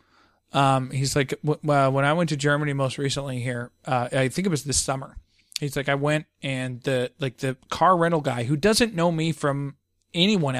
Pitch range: 130-150 Hz